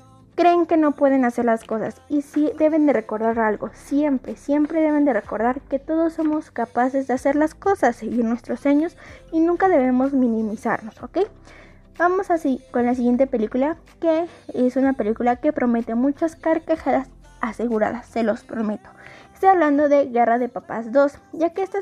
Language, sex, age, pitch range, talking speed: Spanish, female, 20-39, 235-310 Hz, 175 wpm